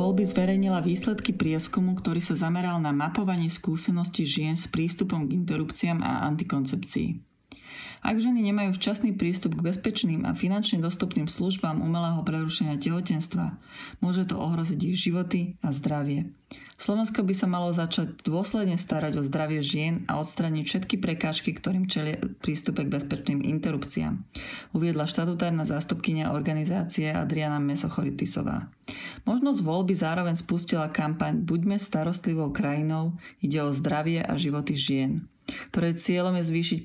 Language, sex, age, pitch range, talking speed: Slovak, female, 30-49, 155-195 Hz, 135 wpm